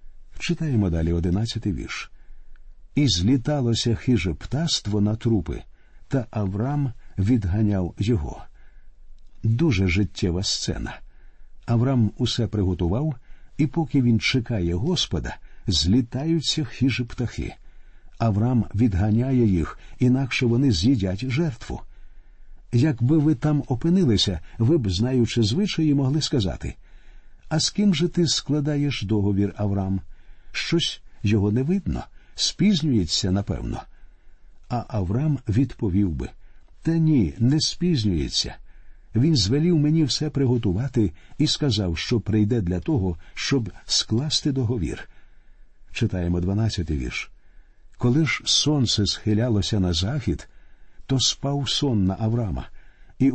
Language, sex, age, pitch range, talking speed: Ukrainian, male, 50-69, 100-140 Hz, 110 wpm